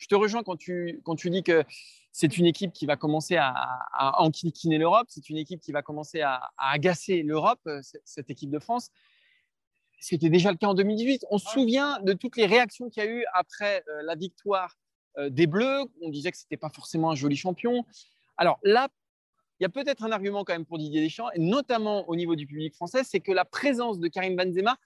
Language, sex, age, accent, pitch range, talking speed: French, male, 20-39, French, 150-205 Hz, 230 wpm